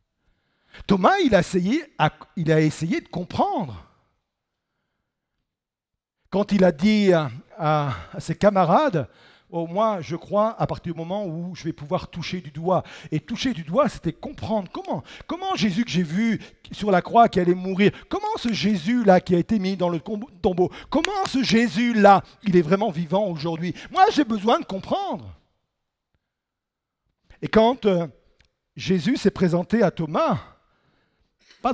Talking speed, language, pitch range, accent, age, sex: 160 wpm, French, 150-215 Hz, French, 50-69, male